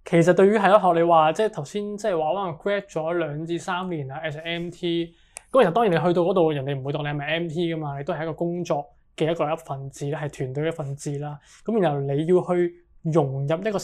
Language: Chinese